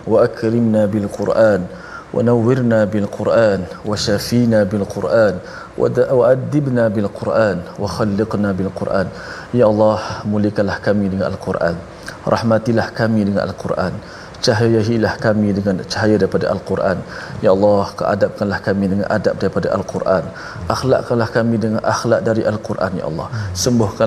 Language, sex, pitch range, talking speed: Malayalam, male, 100-110 Hz, 70 wpm